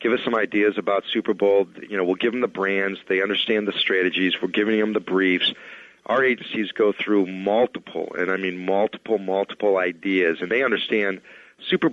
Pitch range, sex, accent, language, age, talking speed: 95-110 Hz, male, American, English, 40-59, 190 wpm